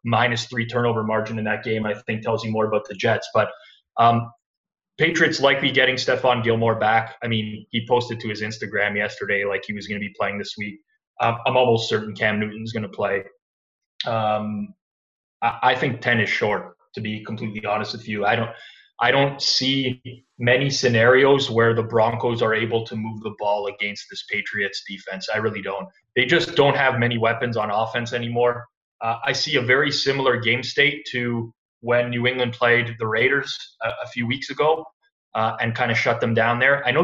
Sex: male